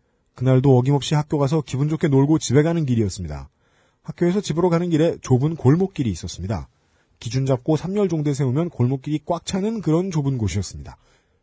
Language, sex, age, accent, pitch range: Korean, male, 40-59, native, 100-160 Hz